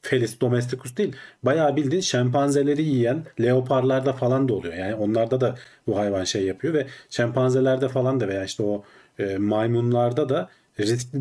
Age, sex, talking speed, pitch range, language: 40-59, male, 155 wpm, 110-135 Hz, Turkish